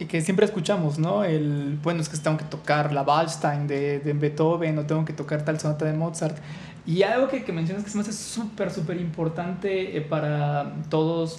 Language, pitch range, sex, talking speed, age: Spanish, 155-185 Hz, male, 210 wpm, 20-39